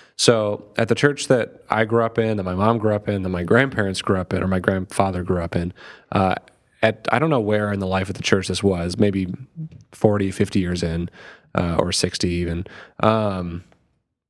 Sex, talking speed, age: male, 215 wpm, 30-49